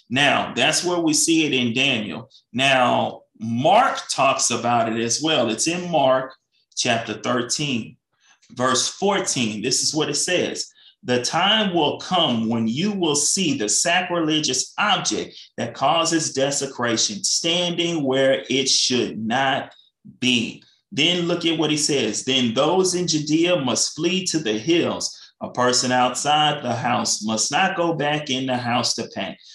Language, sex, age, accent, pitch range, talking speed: English, male, 30-49, American, 125-170 Hz, 155 wpm